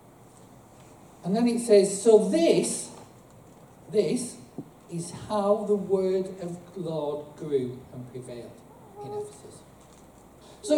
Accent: British